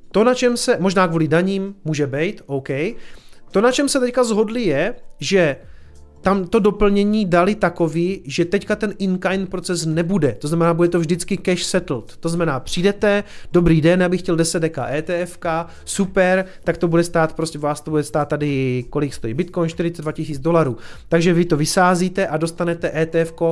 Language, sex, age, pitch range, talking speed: Czech, male, 30-49, 155-190 Hz, 180 wpm